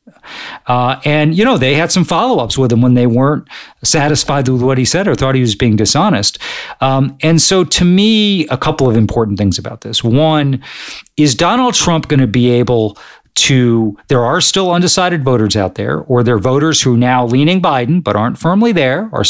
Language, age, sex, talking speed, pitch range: English, 40-59, male, 210 wpm, 115-150 Hz